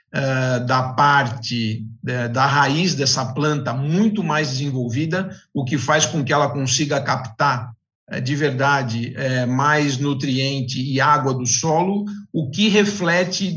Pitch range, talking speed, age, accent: 135-165 Hz, 125 wpm, 50-69, Brazilian